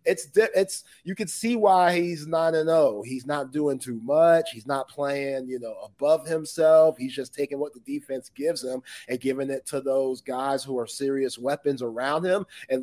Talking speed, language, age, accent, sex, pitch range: 200 wpm, English, 30-49, American, male, 120-145 Hz